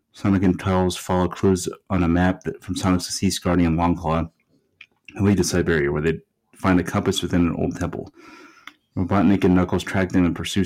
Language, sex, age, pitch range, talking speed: English, male, 30-49, 85-95 Hz, 190 wpm